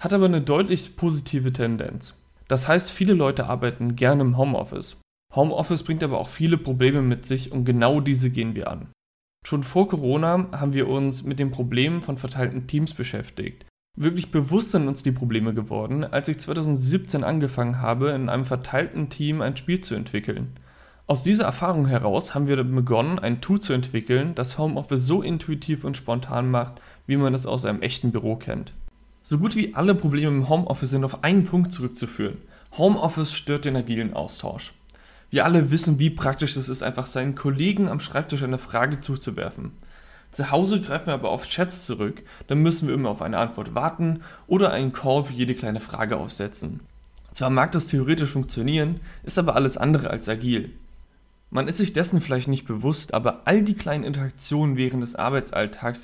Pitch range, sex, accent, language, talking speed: 120-160 Hz, male, German, German, 180 wpm